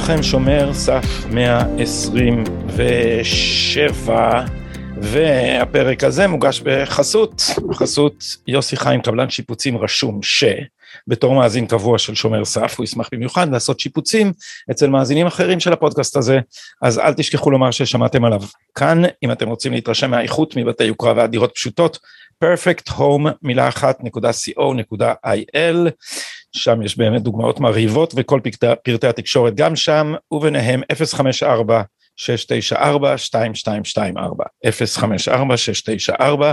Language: Hebrew